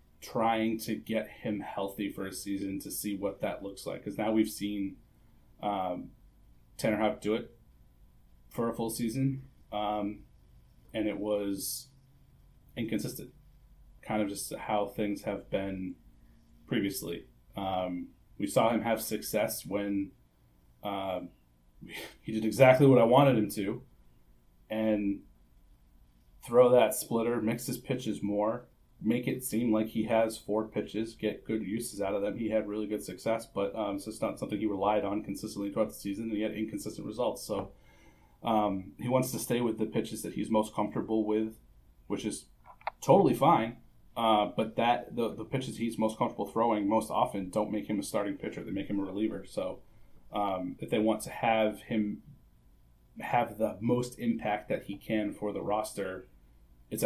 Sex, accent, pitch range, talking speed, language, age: male, American, 95-110 Hz, 170 wpm, English, 30-49